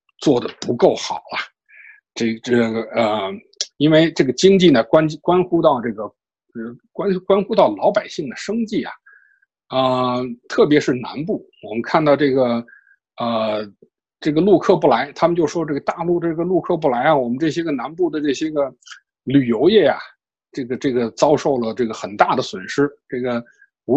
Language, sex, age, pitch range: Chinese, male, 60-79, 130-210 Hz